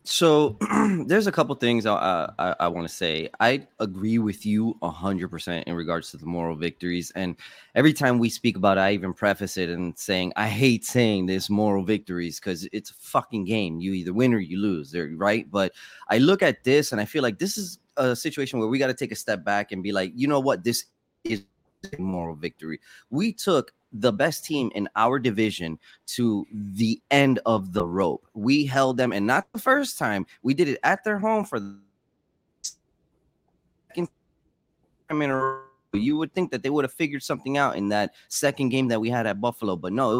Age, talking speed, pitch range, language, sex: 20-39, 215 wpm, 100-145 Hz, English, male